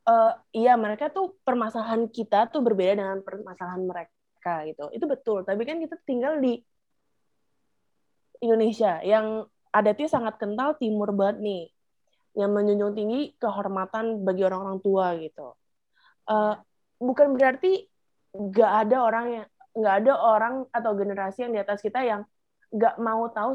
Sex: female